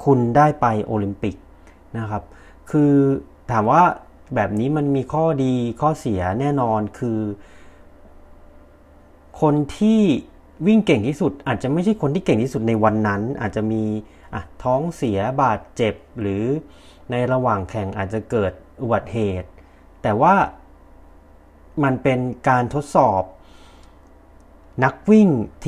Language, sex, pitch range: Thai, male, 85-135 Hz